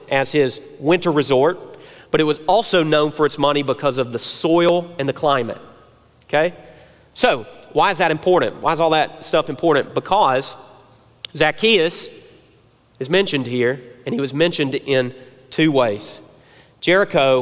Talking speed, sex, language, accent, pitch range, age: 150 wpm, male, English, American, 130-180 Hz, 40-59